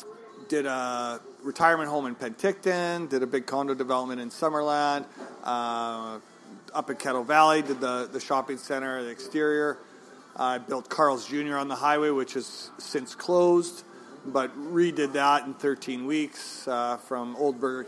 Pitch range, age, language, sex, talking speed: 130-155 Hz, 40-59, English, male, 155 wpm